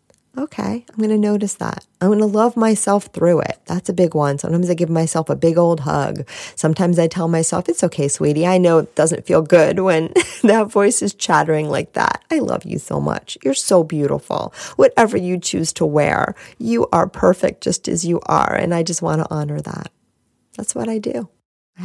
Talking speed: 210 wpm